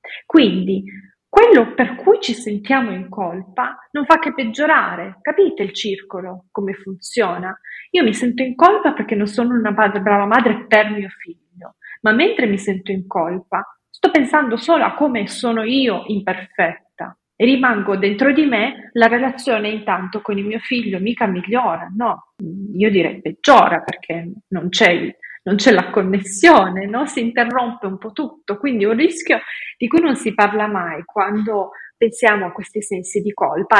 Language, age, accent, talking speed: Italian, 30-49, native, 165 wpm